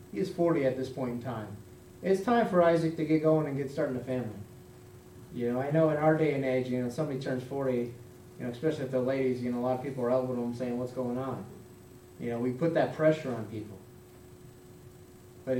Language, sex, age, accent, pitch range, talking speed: English, male, 30-49, American, 120-155 Hz, 240 wpm